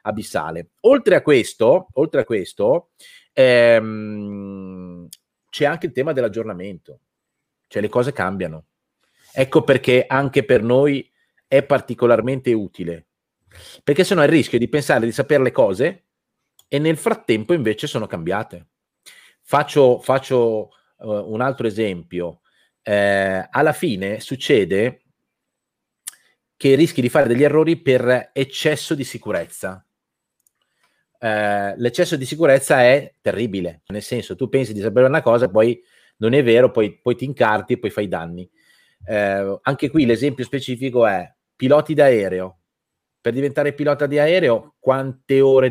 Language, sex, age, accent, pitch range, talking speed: Italian, male, 30-49, native, 105-145 Hz, 130 wpm